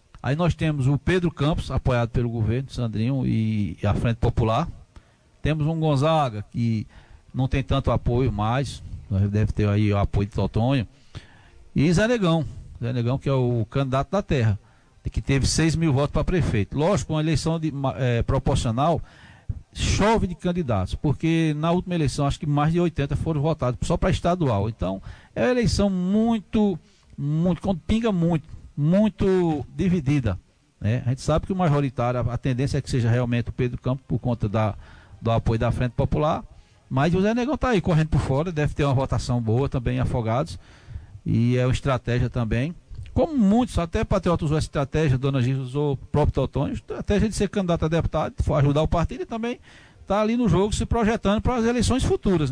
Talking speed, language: 185 wpm, Portuguese